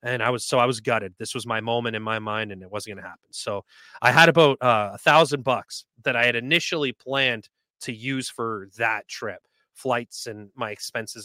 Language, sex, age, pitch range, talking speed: English, male, 30-49, 120-155 Hz, 220 wpm